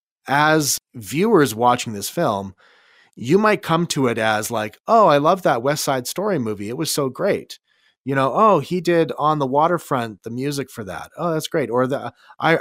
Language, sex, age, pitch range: English, male, 30-49, 105-150 Hz